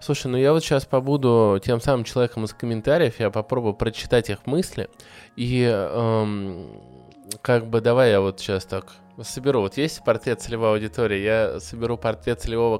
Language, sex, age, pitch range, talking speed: Russian, male, 20-39, 110-135 Hz, 165 wpm